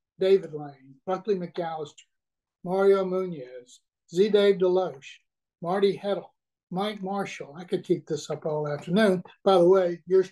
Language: English